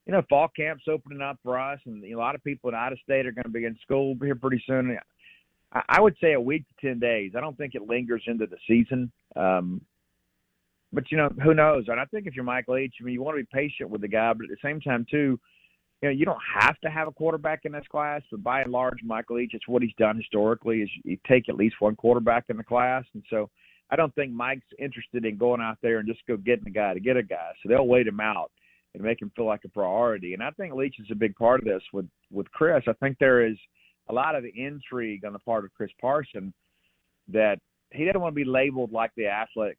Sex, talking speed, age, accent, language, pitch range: male, 265 wpm, 40-59, American, English, 110-135 Hz